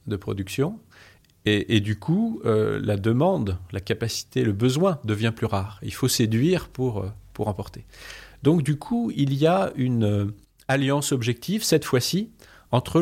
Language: French